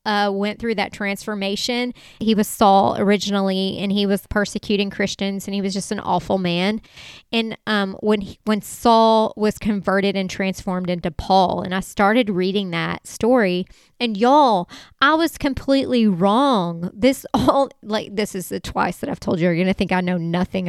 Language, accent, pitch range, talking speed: English, American, 190-230 Hz, 185 wpm